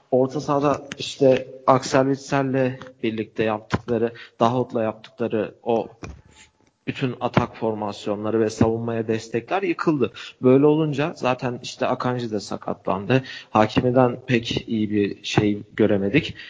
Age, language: 40-59, Turkish